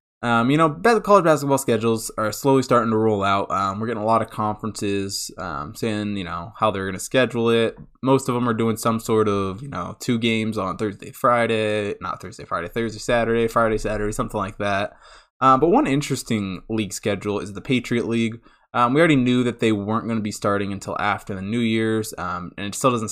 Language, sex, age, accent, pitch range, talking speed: English, male, 20-39, American, 105-125 Hz, 220 wpm